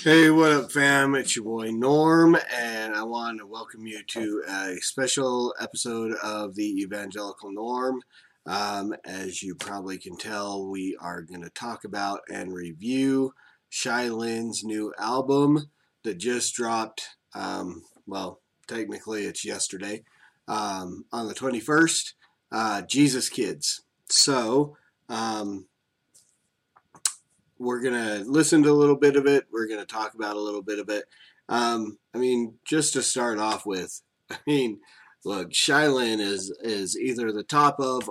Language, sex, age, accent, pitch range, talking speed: English, male, 30-49, American, 105-135 Hz, 145 wpm